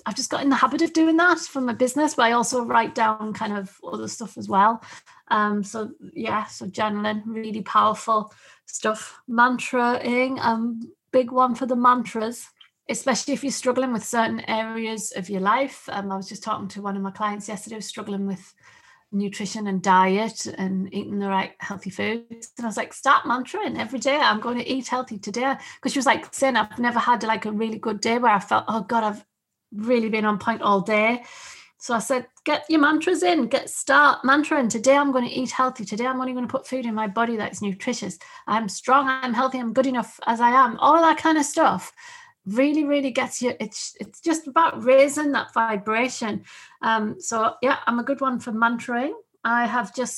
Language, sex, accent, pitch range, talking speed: English, female, British, 215-265 Hz, 215 wpm